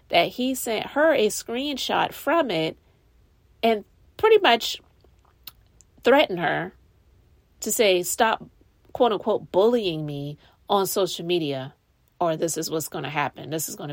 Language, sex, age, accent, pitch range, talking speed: English, female, 30-49, American, 150-225 Hz, 140 wpm